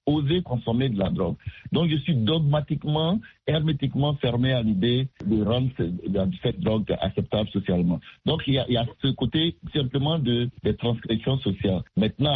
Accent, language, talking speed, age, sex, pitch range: French, French, 165 wpm, 60-79, male, 110-145 Hz